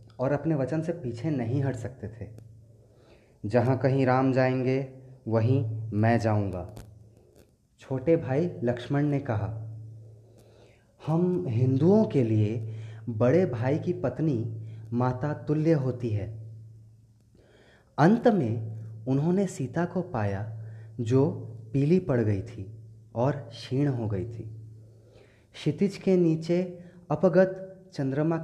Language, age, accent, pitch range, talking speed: Hindi, 30-49, native, 110-150 Hz, 115 wpm